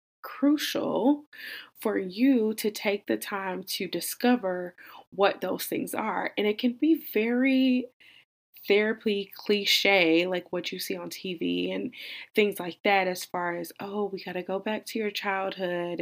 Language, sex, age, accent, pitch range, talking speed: English, female, 20-39, American, 185-225 Hz, 155 wpm